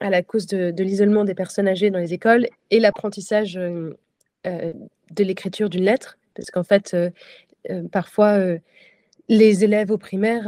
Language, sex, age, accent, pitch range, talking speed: French, female, 20-39, French, 185-215 Hz, 165 wpm